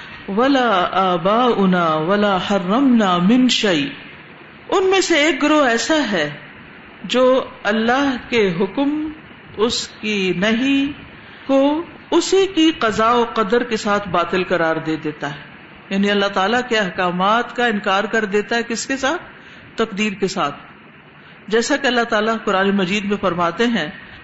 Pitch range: 200-270 Hz